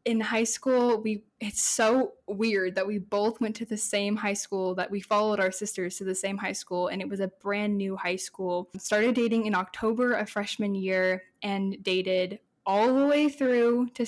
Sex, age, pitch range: female, 10-29, 195-225 Hz